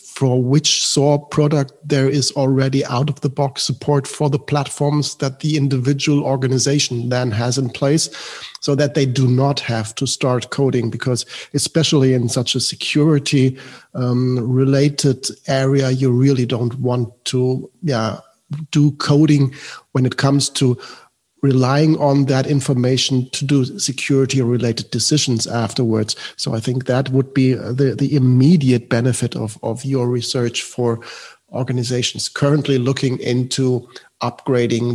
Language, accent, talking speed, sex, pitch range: English, German, 140 wpm, male, 125-150 Hz